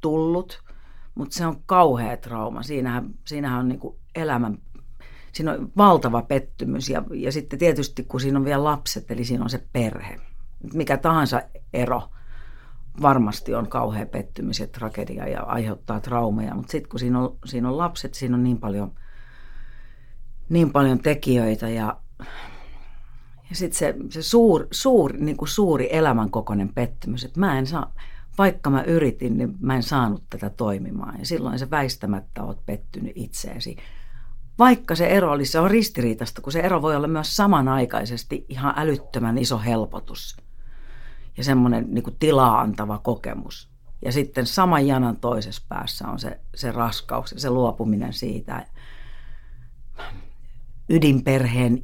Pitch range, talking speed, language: 120-150 Hz, 145 wpm, Finnish